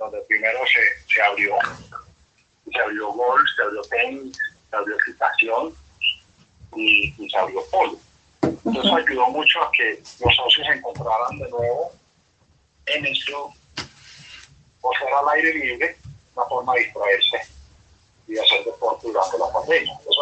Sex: male